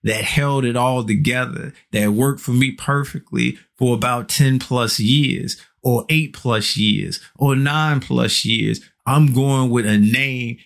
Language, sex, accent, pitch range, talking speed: English, male, American, 120-150 Hz, 160 wpm